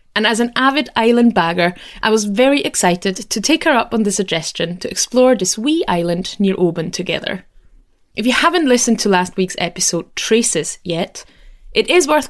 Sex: female